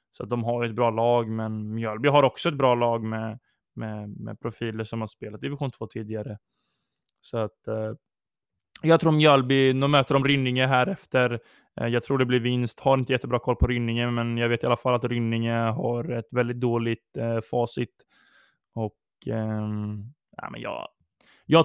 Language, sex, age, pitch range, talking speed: Swedish, male, 20-39, 110-130 Hz, 190 wpm